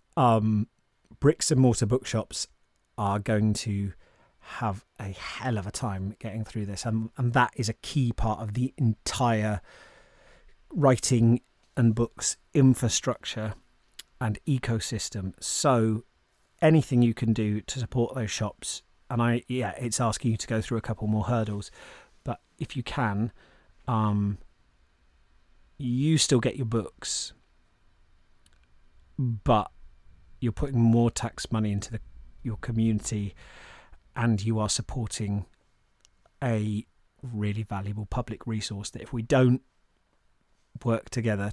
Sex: male